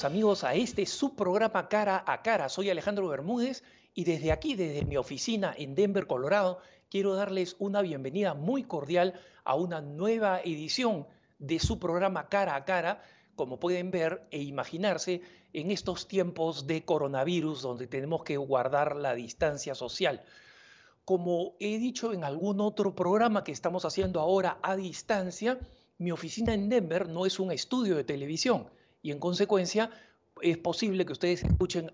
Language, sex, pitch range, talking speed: Spanish, male, 160-200 Hz, 155 wpm